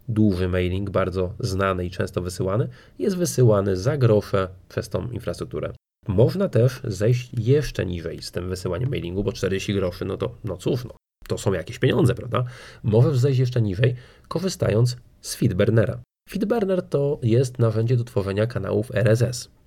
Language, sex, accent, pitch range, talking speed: Polish, male, native, 100-130 Hz, 155 wpm